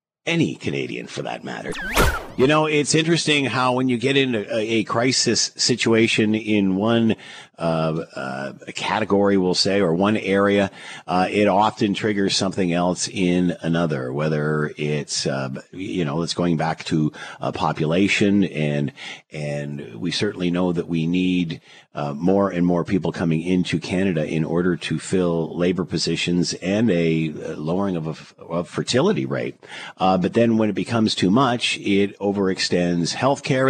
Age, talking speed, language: 50-69, 160 wpm, English